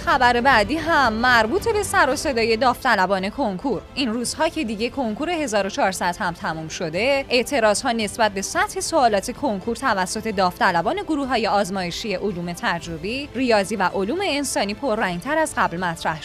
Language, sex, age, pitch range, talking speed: Persian, female, 10-29, 200-290 Hz, 150 wpm